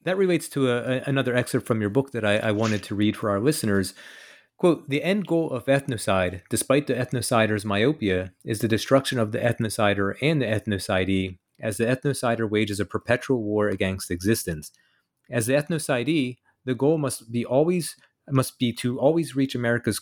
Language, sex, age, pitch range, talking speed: English, male, 30-49, 105-130 Hz, 180 wpm